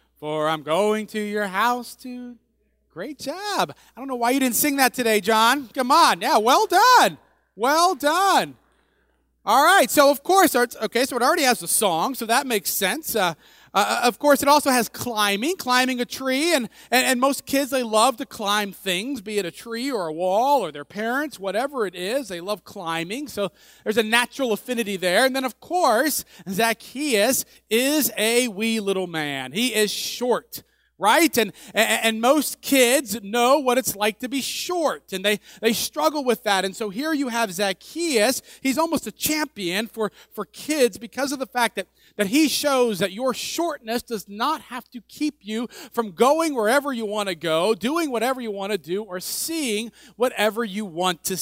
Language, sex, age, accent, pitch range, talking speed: English, male, 30-49, American, 200-270 Hz, 195 wpm